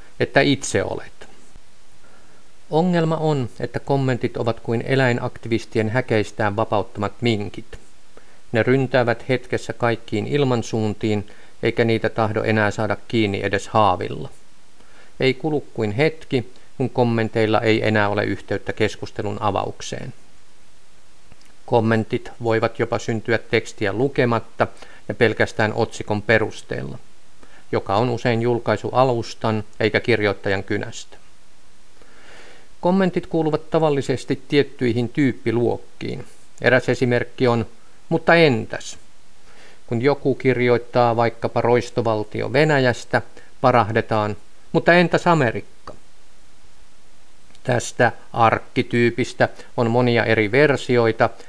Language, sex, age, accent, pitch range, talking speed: Finnish, male, 50-69, native, 110-130 Hz, 95 wpm